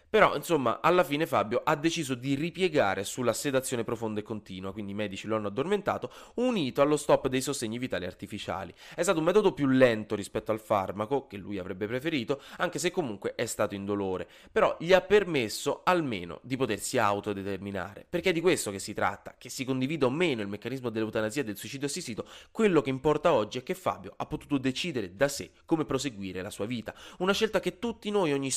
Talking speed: 200 wpm